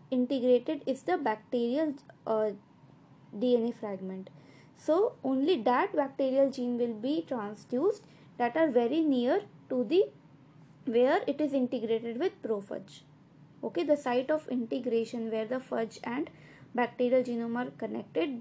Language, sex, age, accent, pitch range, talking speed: English, female, 20-39, Indian, 220-290 Hz, 130 wpm